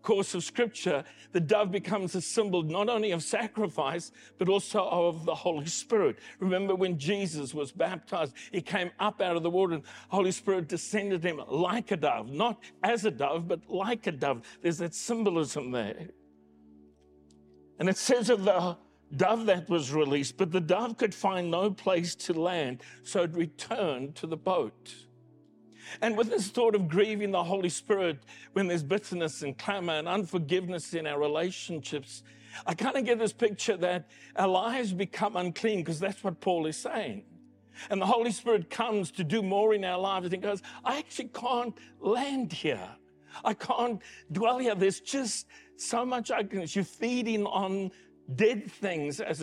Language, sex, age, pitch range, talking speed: English, male, 60-79, 160-210 Hz, 175 wpm